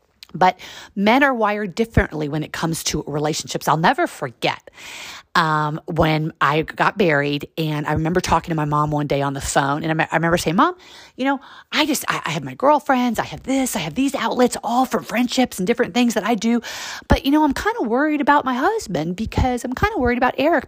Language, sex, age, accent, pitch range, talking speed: English, female, 40-59, American, 160-260 Hz, 230 wpm